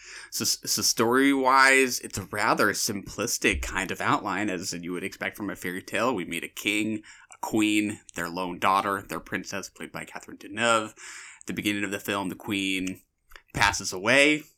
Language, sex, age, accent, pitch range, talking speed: English, male, 20-39, American, 95-115 Hz, 175 wpm